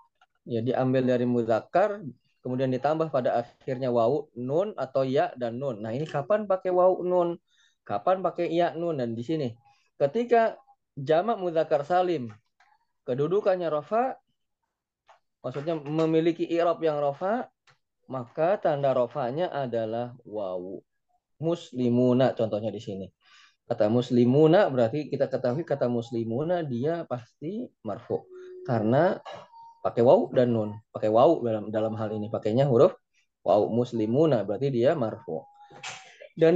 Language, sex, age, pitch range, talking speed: Indonesian, male, 20-39, 120-180 Hz, 125 wpm